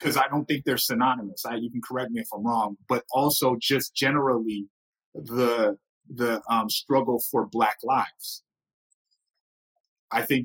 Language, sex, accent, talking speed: English, male, American, 155 wpm